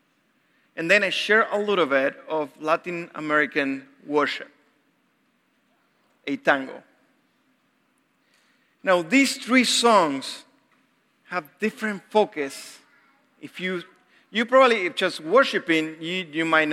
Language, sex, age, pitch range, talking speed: English, male, 50-69, 165-240 Hz, 110 wpm